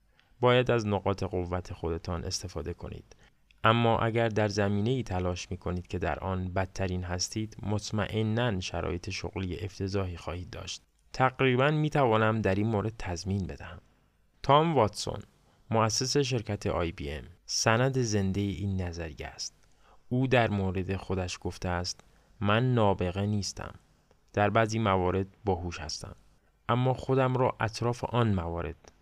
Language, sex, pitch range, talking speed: Persian, male, 90-110 Hz, 130 wpm